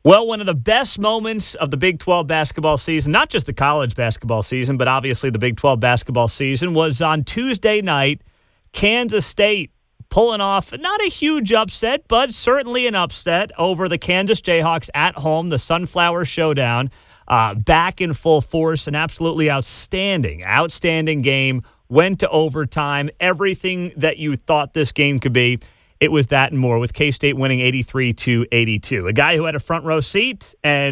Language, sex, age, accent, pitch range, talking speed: English, male, 30-49, American, 135-180 Hz, 175 wpm